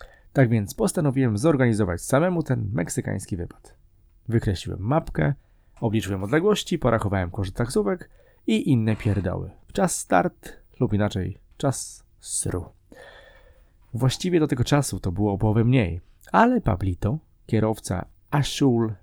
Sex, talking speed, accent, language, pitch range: male, 115 wpm, native, Polish, 95-135 Hz